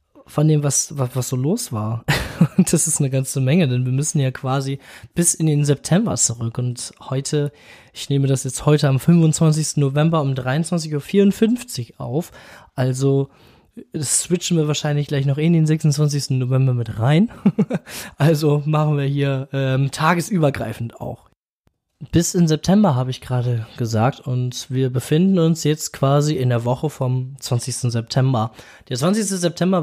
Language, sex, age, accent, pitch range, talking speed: German, male, 20-39, German, 125-155 Hz, 155 wpm